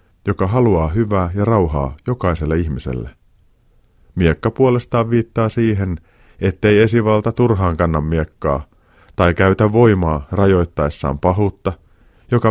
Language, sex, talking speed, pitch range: Finnish, male, 105 wpm, 85-110 Hz